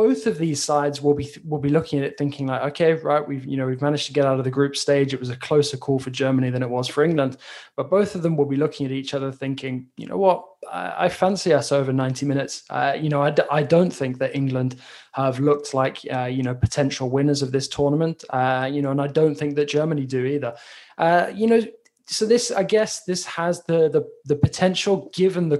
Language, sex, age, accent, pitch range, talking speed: English, male, 20-39, British, 130-160 Hz, 250 wpm